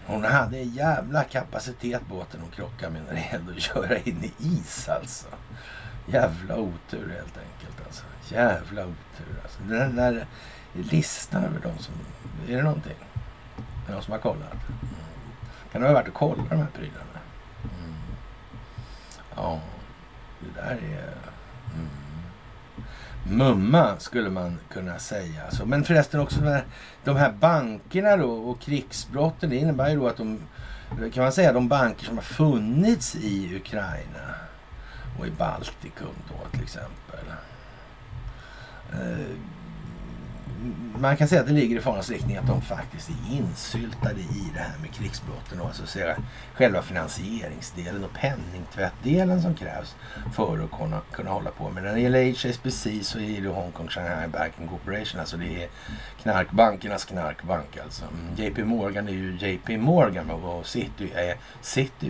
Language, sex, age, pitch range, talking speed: Swedish, male, 60-79, 90-130 Hz, 150 wpm